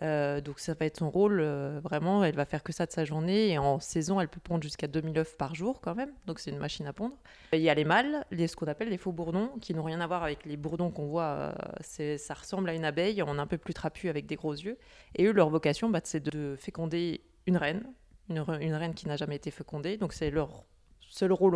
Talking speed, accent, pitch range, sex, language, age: 270 wpm, French, 155-185 Hz, female, French, 30-49